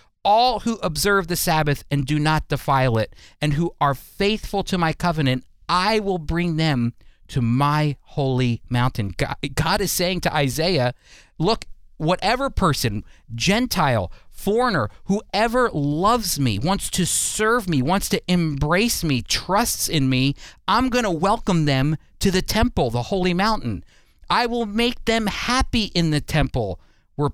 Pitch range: 120-195 Hz